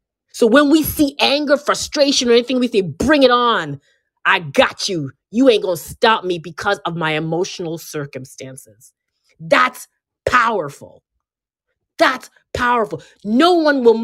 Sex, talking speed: female, 140 wpm